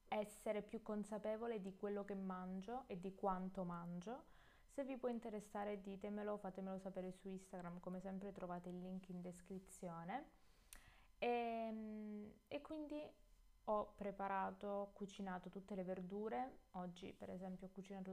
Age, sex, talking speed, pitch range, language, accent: 20-39, female, 135 wpm, 195-230 Hz, Italian, native